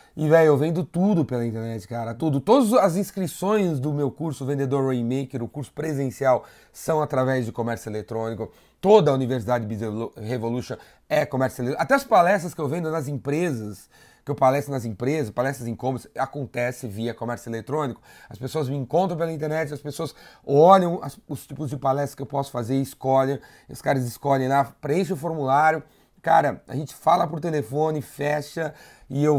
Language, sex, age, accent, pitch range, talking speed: Portuguese, male, 30-49, Brazilian, 125-160 Hz, 180 wpm